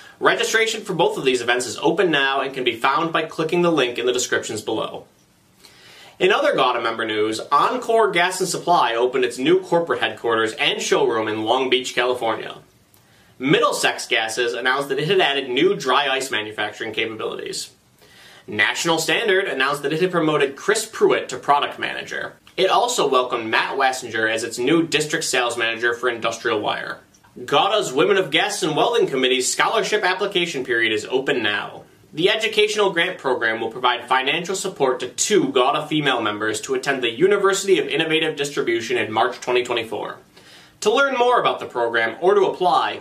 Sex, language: male, English